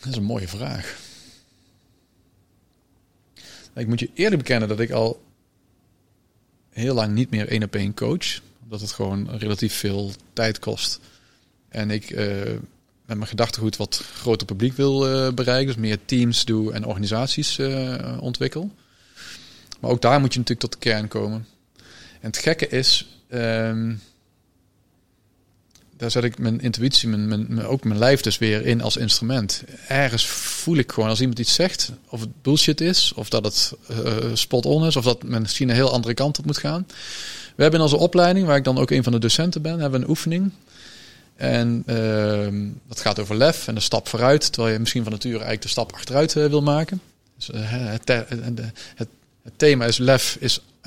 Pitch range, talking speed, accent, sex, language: 110-135 Hz, 190 wpm, Dutch, male, Dutch